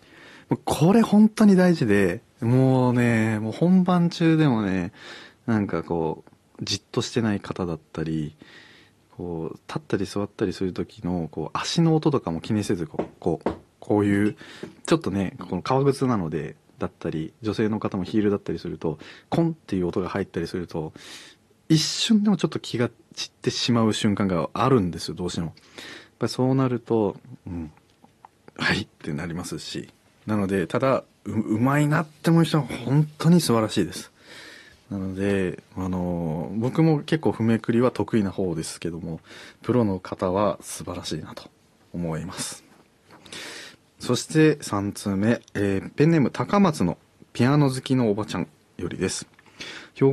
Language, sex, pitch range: Japanese, male, 95-140 Hz